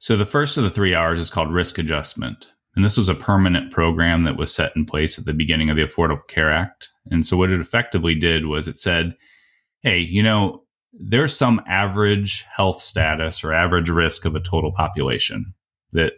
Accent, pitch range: American, 80-100 Hz